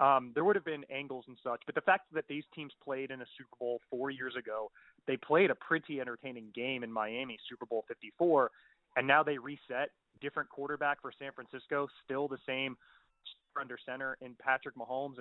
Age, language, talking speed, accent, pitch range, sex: 30-49, English, 195 wpm, American, 130-155 Hz, male